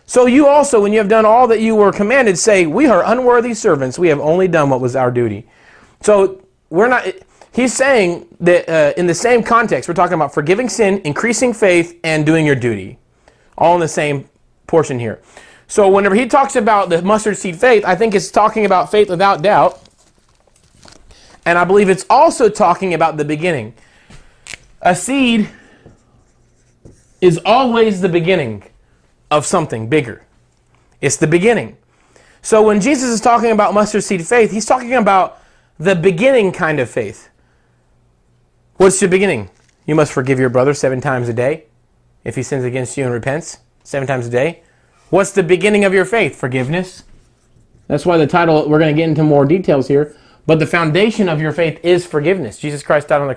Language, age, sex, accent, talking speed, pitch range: English, 30-49, male, American, 180 wpm, 140-205 Hz